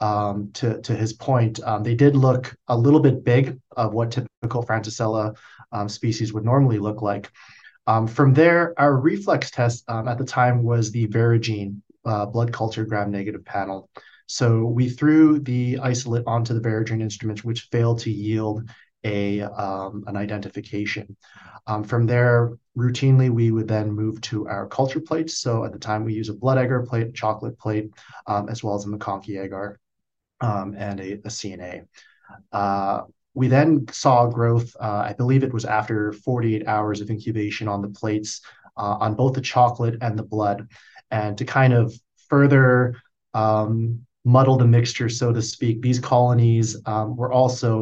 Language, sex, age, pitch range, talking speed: English, male, 30-49, 105-125 Hz, 170 wpm